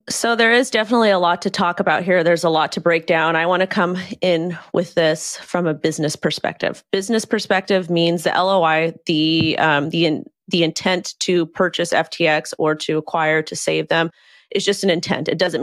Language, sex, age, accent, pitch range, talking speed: English, female, 30-49, American, 155-185 Hz, 205 wpm